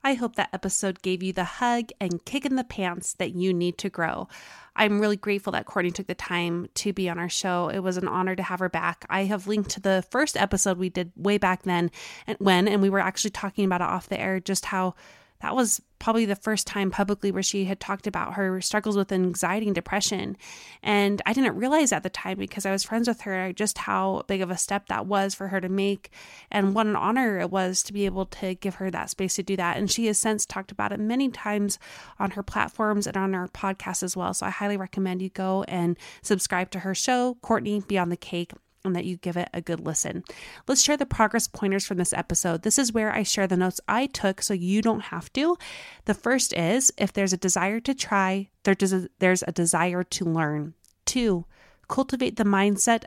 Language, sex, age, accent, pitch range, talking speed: English, female, 20-39, American, 180-215 Hz, 235 wpm